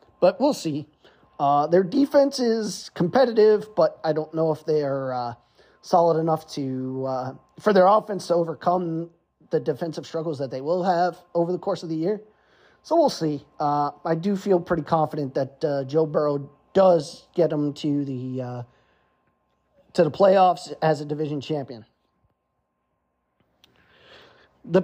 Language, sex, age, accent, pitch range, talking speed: English, male, 30-49, American, 150-185 Hz, 155 wpm